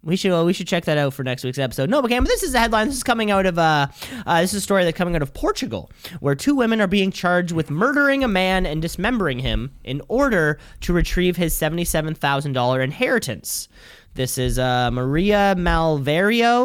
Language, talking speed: English, 230 wpm